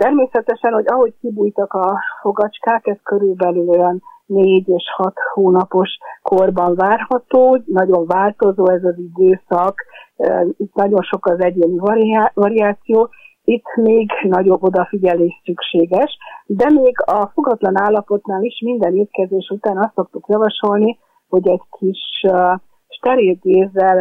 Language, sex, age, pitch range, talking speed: Hungarian, female, 50-69, 180-210 Hz, 115 wpm